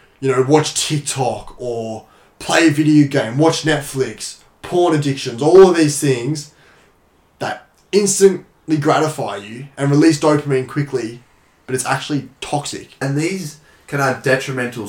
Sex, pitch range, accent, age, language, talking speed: male, 120-140 Hz, Australian, 10-29, English, 135 wpm